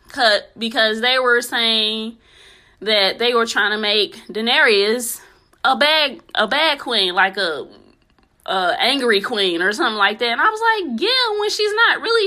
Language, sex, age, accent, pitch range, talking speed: English, female, 20-39, American, 195-290 Hz, 170 wpm